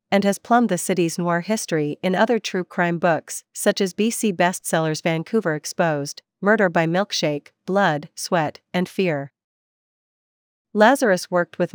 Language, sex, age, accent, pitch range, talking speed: English, female, 40-59, American, 165-200 Hz, 145 wpm